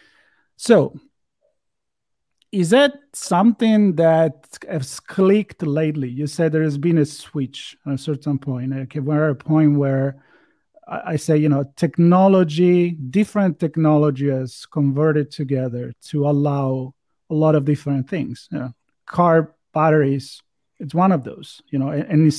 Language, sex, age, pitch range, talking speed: English, male, 40-59, 140-175 Hz, 135 wpm